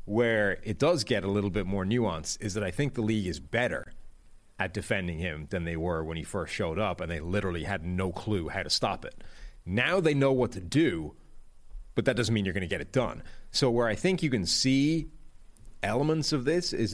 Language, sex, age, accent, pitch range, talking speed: English, male, 30-49, American, 95-125 Hz, 230 wpm